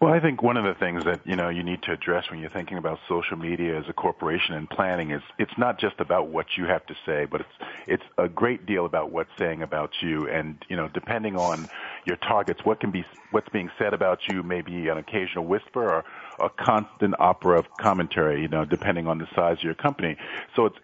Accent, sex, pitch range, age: American, male, 80-100 Hz, 40-59